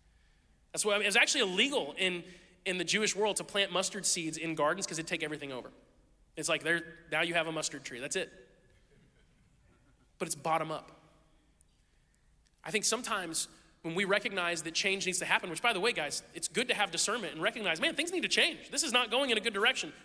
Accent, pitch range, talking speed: American, 180-230 Hz, 215 wpm